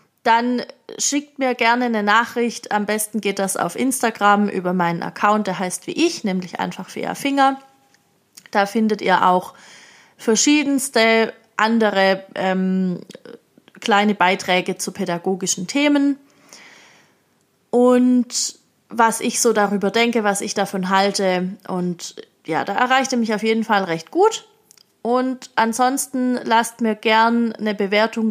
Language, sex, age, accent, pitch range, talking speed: German, female, 30-49, German, 195-245 Hz, 135 wpm